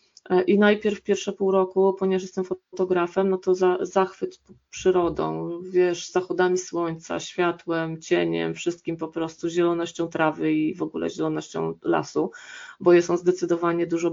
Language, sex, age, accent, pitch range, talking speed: Polish, female, 20-39, native, 165-185 Hz, 140 wpm